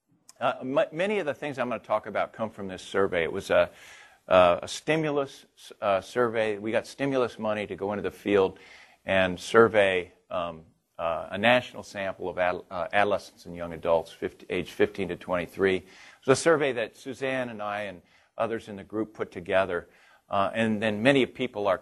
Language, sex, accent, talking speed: English, male, American, 190 wpm